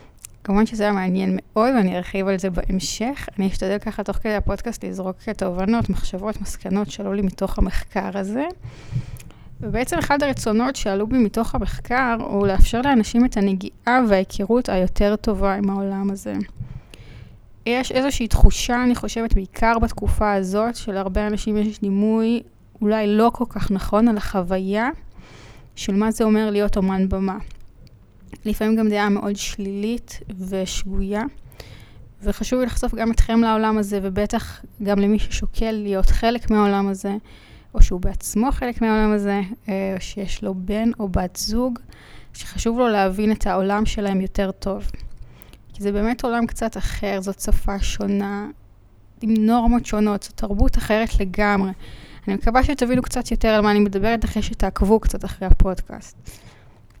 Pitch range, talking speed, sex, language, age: 195-225 Hz, 150 wpm, female, Hebrew, 20-39